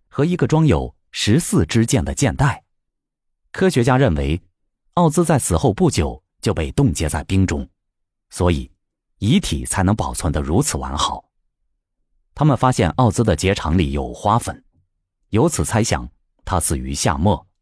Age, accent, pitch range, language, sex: 30-49, native, 85-140 Hz, Chinese, male